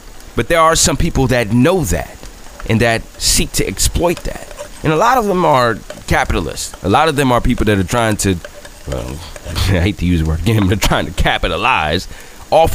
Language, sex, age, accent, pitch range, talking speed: English, male, 30-49, American, 90-125 Hz, 205 wpm